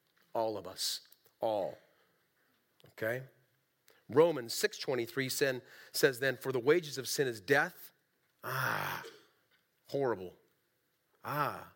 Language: English